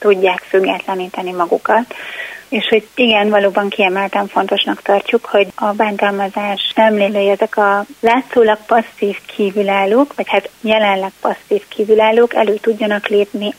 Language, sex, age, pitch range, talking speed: Hungarian, female, 30-49, 195-225 Hz, 120 wpm